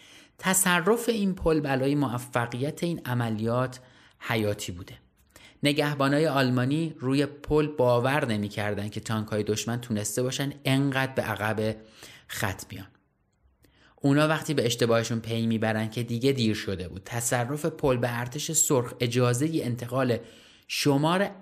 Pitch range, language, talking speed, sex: 115-145 Hz, Persian, 130 wpm, male